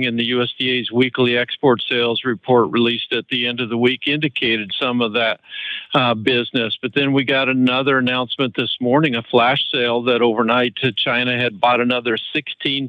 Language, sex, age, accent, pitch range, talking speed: English, male, 50-69, American, 115-130 Hz, 185 wpm